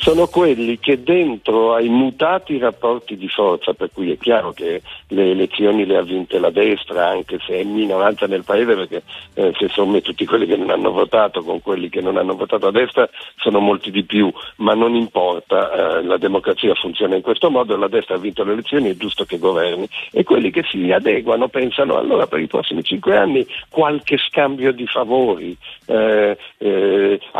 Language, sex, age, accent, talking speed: Italian, male, 60-79, native, 195 wpm